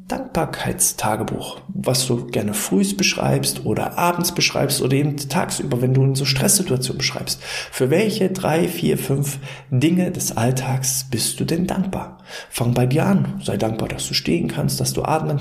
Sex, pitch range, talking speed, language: male, 120-165 Hz, 170 wpm, German